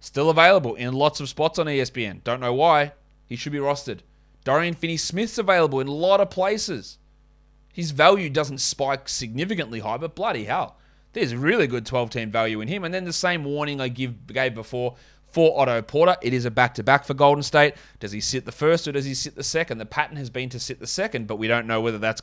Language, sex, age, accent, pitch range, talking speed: English, male, 20-39, Australian, 120-150 Hz, 220 wpm